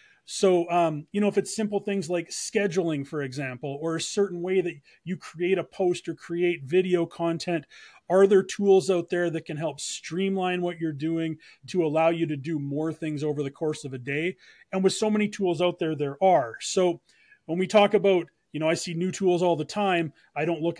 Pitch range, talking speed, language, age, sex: 145-185 Hz, 220 wpm, English, 30-49, male